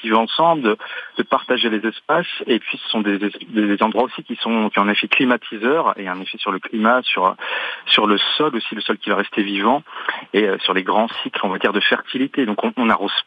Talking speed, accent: 240 wpm, French